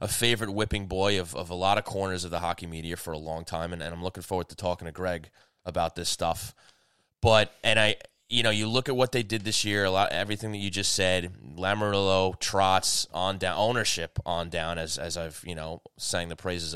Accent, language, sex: American, English, male